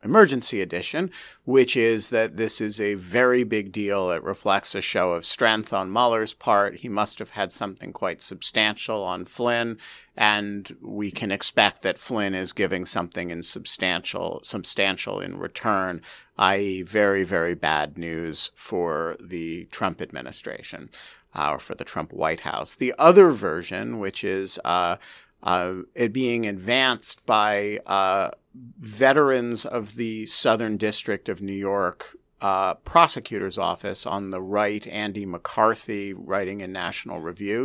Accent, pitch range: American, 95-115 Hz